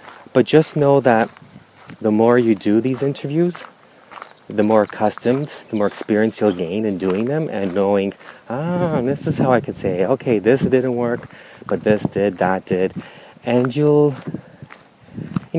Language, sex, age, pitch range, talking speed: English, male, 30-49, 100-135 Hz, 160 wpm